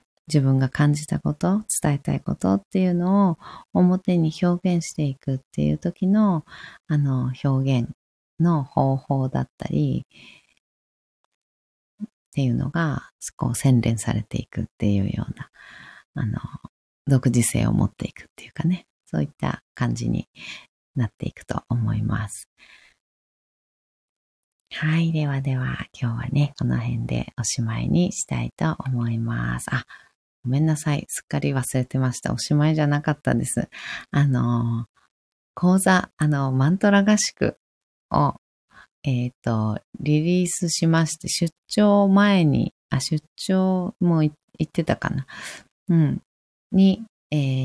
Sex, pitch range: female, 120-180 Hz